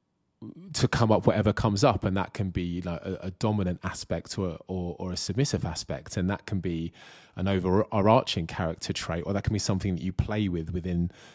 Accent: British